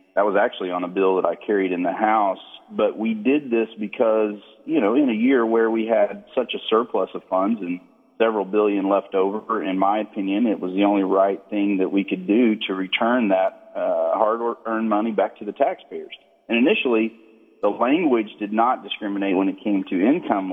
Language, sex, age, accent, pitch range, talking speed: English, male, 40-59, American, 95-115 Hz, 205 wpm